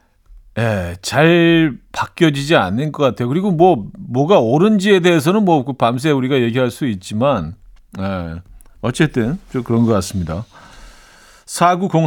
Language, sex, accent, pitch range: Korean, male, native, 105-155 Hz